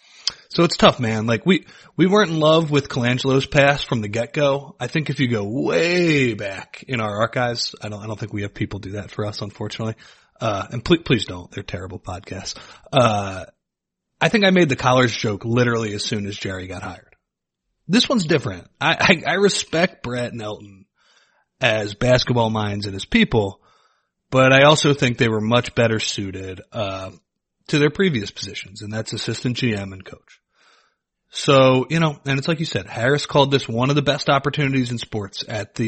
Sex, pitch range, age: male, 105-140 Hz, 30-49